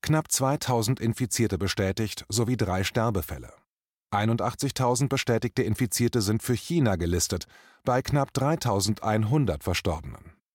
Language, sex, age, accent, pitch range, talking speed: German, male, 30-49, German, 95-130 Hz, 100 wpm